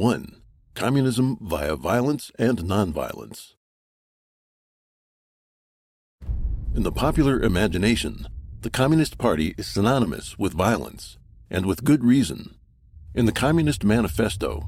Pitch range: 85-125 Hz